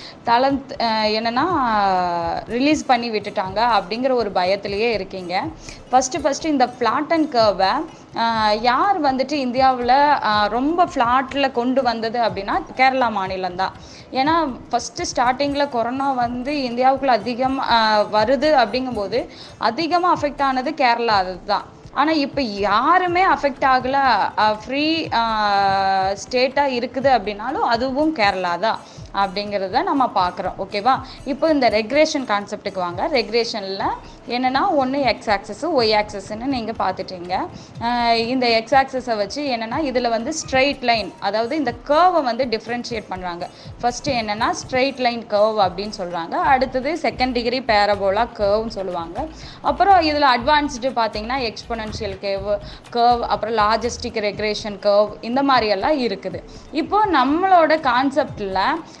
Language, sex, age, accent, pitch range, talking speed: Tamil, female, 20-39, native, 210-275 Hz, 115 wpm